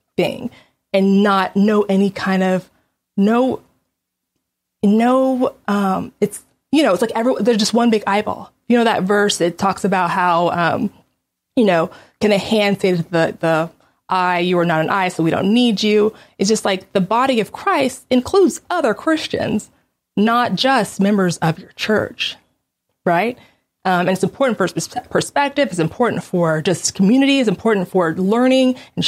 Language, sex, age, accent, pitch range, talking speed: English, female, 20-39, American, 185-240 Hz, 170 wpm